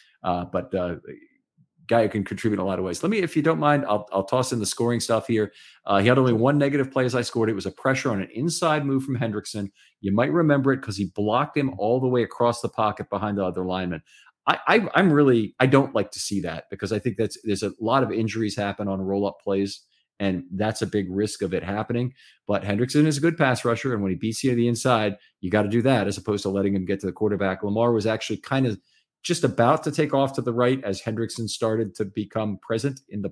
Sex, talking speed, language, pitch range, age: male, 265 wpm, English, 100-125 Hz, 40-59